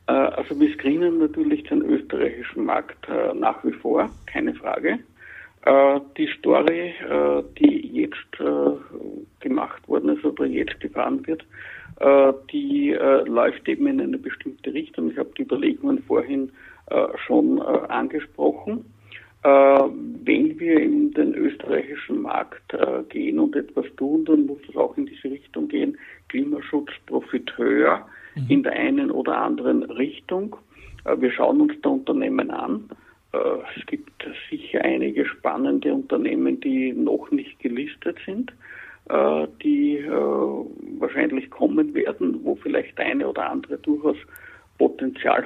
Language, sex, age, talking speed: German, male, 60-79, 135 wpm